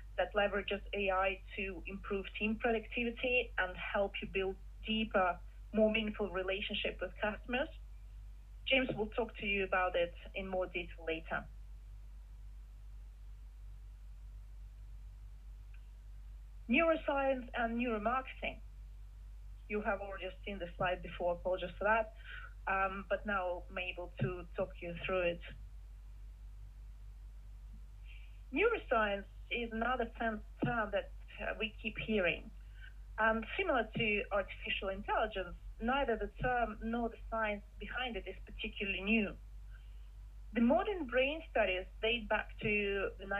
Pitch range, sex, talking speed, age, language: 180-230 Hz, female, 115 wpm, 30-49, English